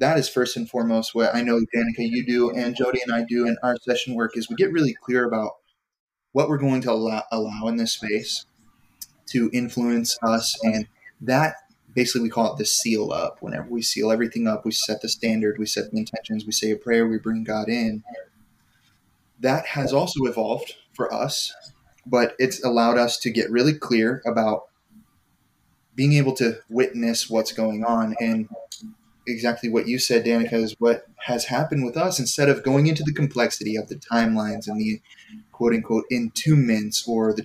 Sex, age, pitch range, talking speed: male, 20-39, 110-130 Hz, 185 wpm